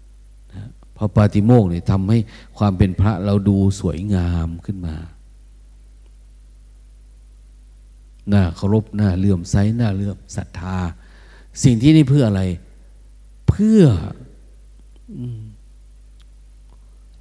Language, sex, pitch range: Thai, male, 80-110 Hz